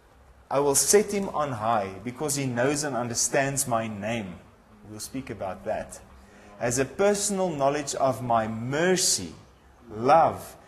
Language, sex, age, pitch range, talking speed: English, male, 30-49, 110-150 Hz, 140 wpm